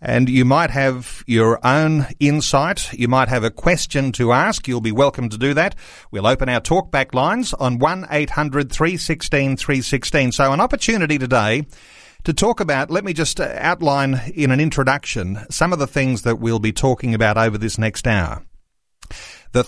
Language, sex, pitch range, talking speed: English, male, 120-155 Hz, 170 wpm